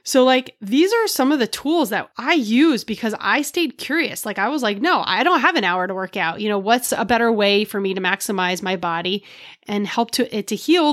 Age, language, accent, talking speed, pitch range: 30-49, English, American, 255 wpm, 195-260 Hz